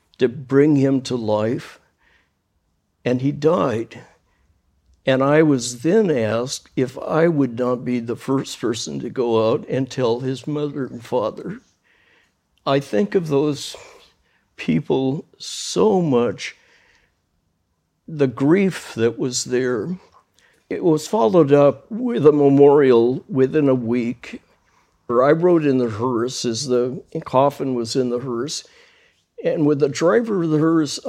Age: 60-79